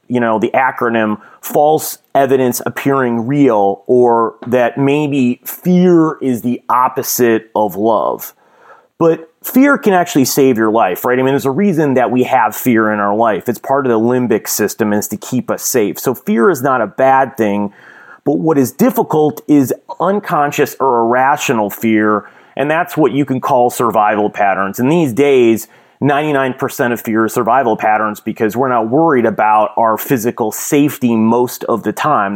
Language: English